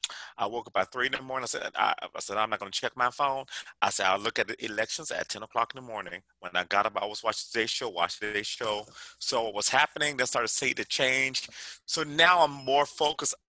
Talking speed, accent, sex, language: 275 wpm, American, male, English